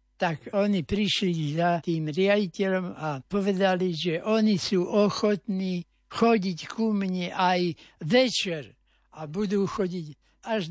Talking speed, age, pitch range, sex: 120 wpm, 60-79, 165-200 Hz, male